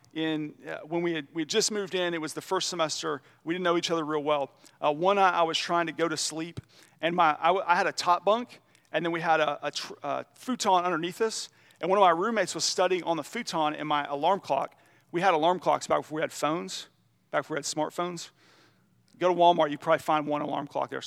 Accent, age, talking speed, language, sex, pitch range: American, 40-59, 255 wpm, English, male, 150-185 Hz